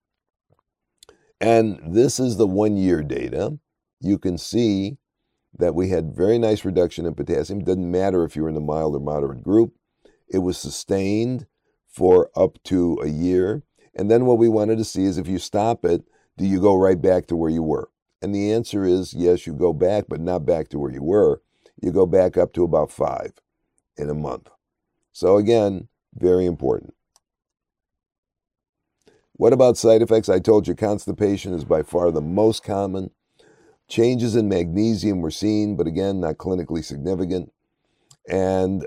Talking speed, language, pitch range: 175 wpm, English, 85-110 Hz